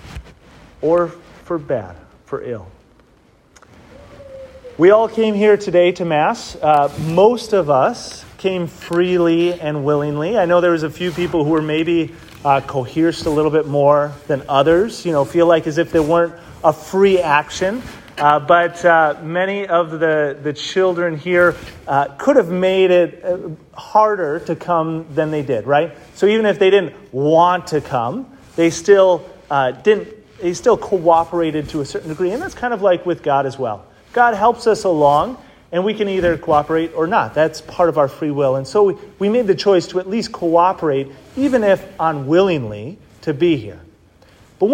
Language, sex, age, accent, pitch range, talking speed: English, male, 30-49, American, 155-190 Hz, 180 wpm